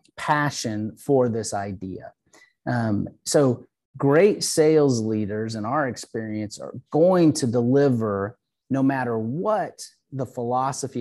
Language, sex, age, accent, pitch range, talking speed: English, male, 30-49, American, 110-135 Hz, 115 wpm